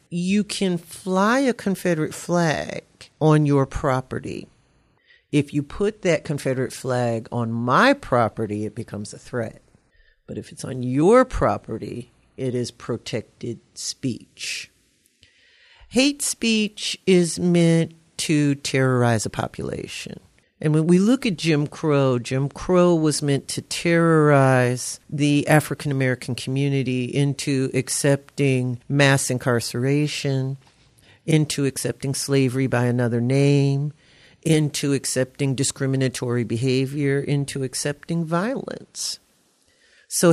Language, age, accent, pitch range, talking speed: English, 50-69, American, 130-165 Hz, 110 wpm